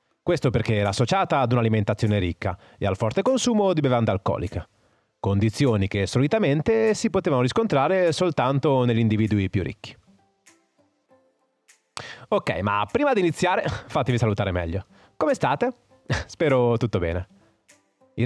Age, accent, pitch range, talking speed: 30-49, native, 105-170 Hz, 130 wpm